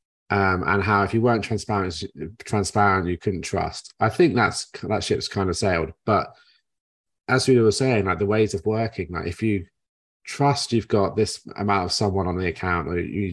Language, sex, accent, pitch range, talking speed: English, male, British, 95-115 Hz, 205 wpm